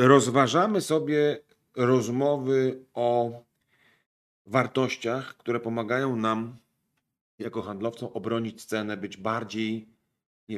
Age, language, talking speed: 40-59, Polish, 85 wpm